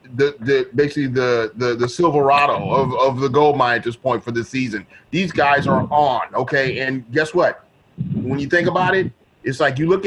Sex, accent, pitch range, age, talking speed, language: male, American, 140-185 Hz, 30-49, 210 wpm, English